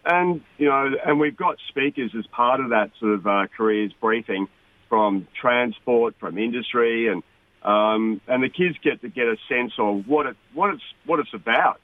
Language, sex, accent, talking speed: English, male, Australian, 195 wpm